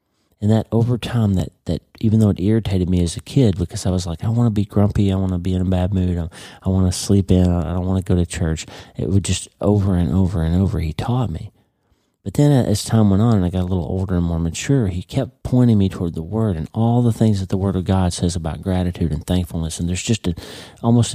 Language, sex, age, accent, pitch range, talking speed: English, male, 40-59, American, 85-105 Hz, 270 wpm